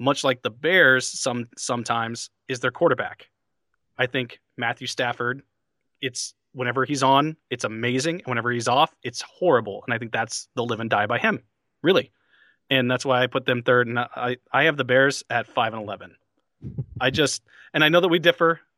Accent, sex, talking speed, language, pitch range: American, male, 195 wpm, English, 120-145 Hz